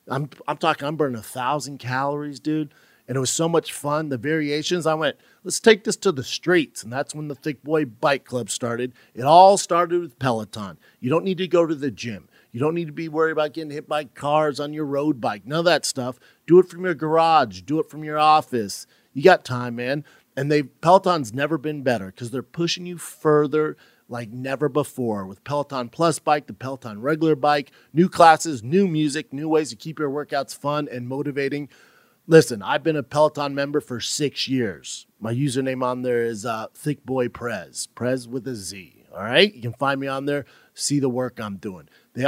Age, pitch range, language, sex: 40-59, 125-160 Hz, English, male